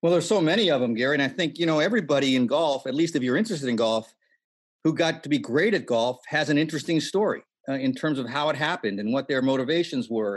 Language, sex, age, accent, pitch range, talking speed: English, male, 50-69, American, 135-170 Hz, 260 wpm